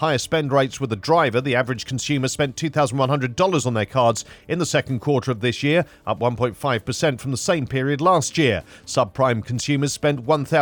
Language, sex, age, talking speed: English, male, 40-59, 180 wpm